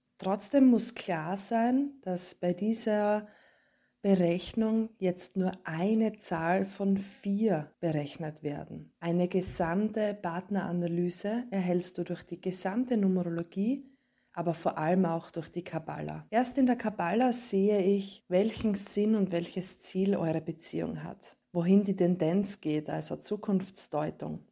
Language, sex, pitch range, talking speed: German, female, 175-215 Hz, 125 wpm